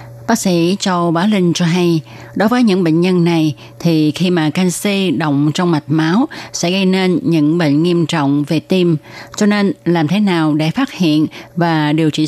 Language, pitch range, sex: Vietnamese, 145-180 Hz, female